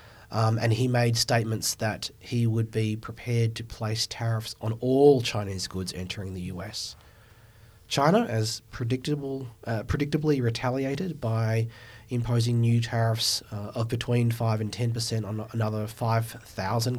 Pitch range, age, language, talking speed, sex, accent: 105-120 Hz, 30-49, English, 145 wpm, male, Australian